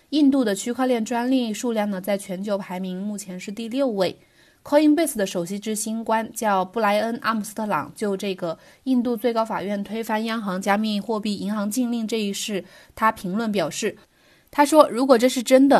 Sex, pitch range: female, 200-255 Hz